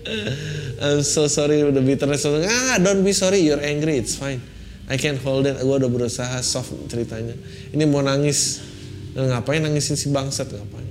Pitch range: 105-135 Hz